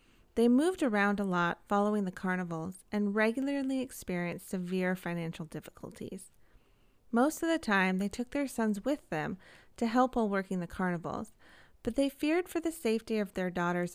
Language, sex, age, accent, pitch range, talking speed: English, female, 30-49, American, 185-240 Hz, 170 wpm